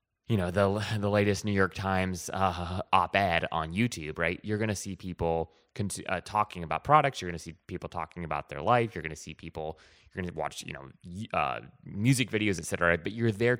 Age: 20-39